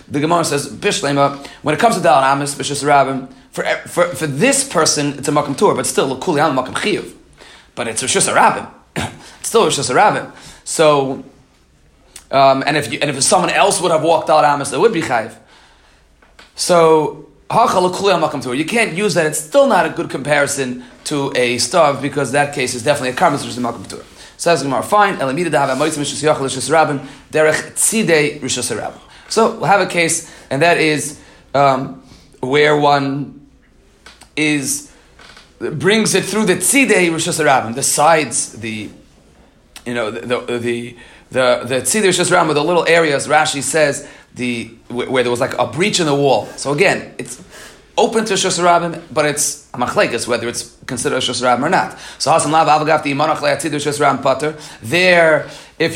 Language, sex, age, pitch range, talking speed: Hebrew, male, 30-49, 135-170 Hz, 165 wpm